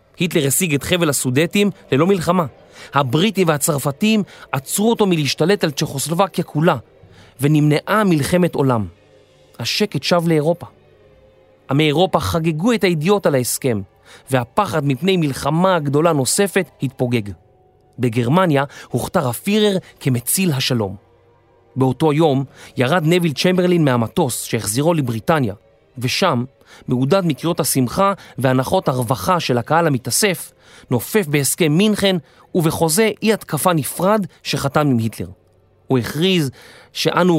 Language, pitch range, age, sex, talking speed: Hebrew, 125-180 Hz, 30-49, male, 110 wpm